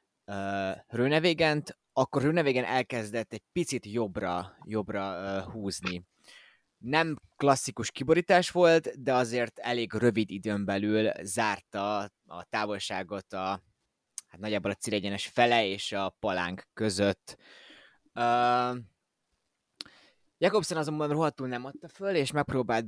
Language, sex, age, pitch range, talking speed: Hungarian, male, 20-39, 105-145 Hz, 115 wpm